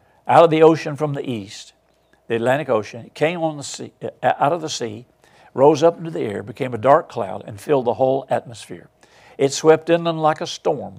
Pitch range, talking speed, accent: 115-160 Hz, 195 wpm, American